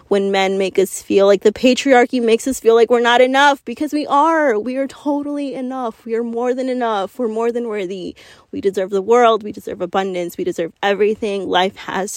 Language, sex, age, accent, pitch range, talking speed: English, female, 20-39, American, 190-230 Hz, 210 wpm